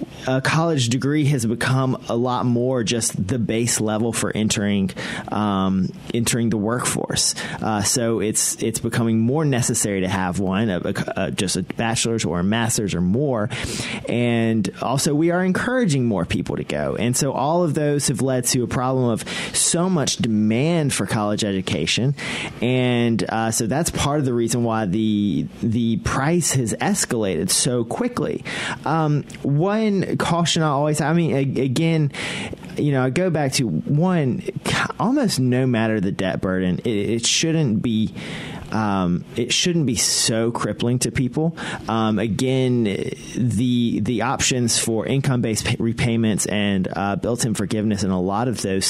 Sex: male